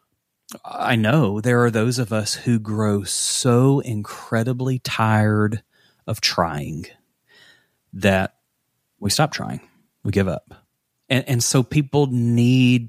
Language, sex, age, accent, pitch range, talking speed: English, male, 30-49, American, 100-120 Hz, 120 wpm